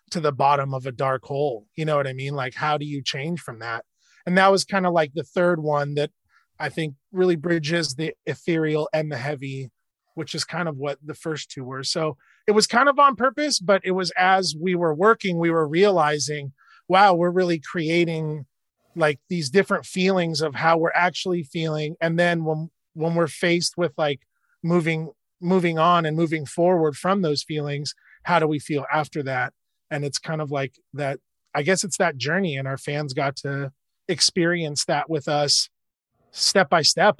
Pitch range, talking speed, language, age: 145-180 Hz, 195 wpm, English, 30-49